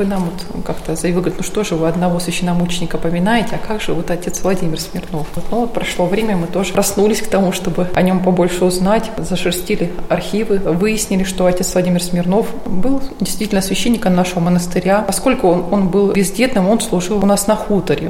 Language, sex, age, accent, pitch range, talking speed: Russian, female, 20-39, native, 170-205 Hz, 185 wpm